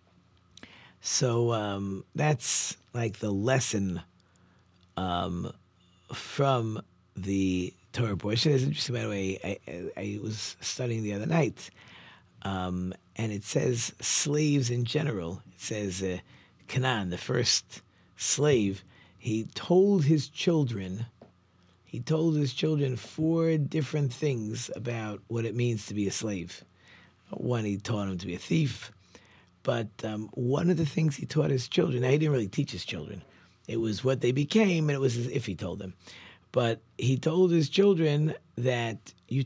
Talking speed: 155 wpm